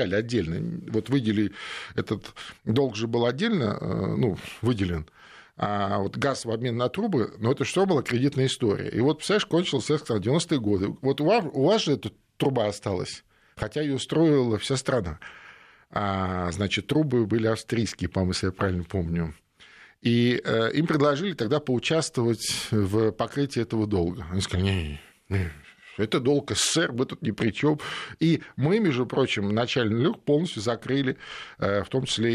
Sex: male